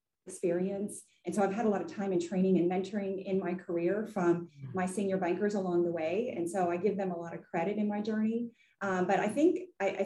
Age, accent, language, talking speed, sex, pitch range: 30-49, American, English, 240 wpm, female, 175-205 Hz